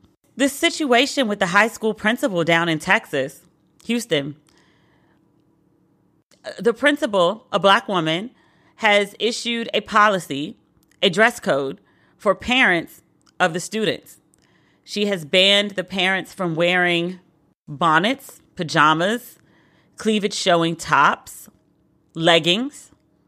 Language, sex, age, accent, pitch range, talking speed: English, female, 30-49, American, 160-205 Hz, 105 wpm